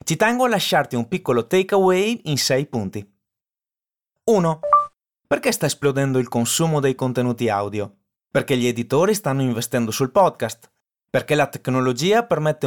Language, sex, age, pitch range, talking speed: Italian, male, 30-49, 125-180 Hz, 140 wpm